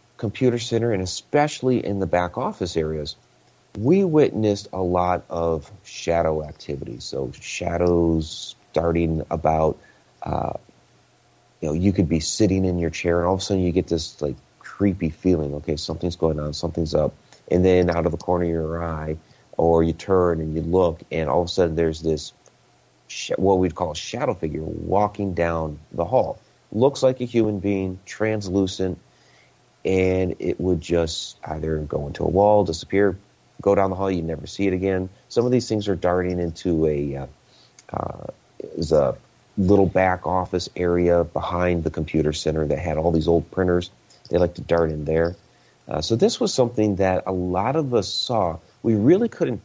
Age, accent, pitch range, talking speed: 30-49, American, 80-100 Hz, 180 wpm